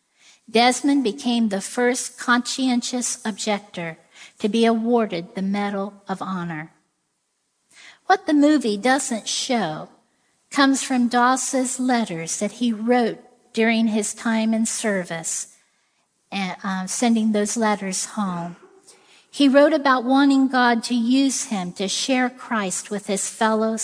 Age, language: 50-69, English